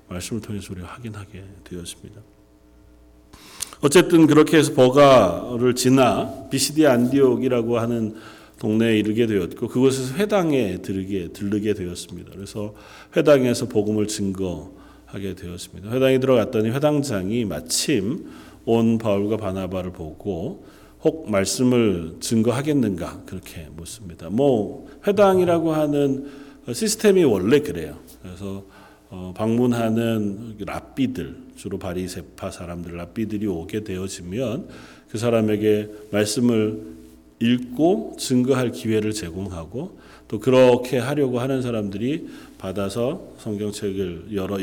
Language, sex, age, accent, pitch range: Korean, male, 40-59, native, 95-125 Hz